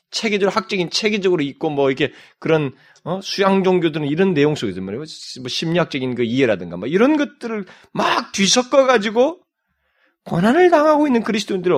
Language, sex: Korean, male